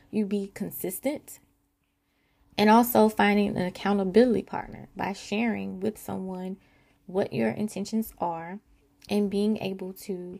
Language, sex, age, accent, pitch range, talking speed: English, female, 20-39, American, 185-225 Hz, 120 wpm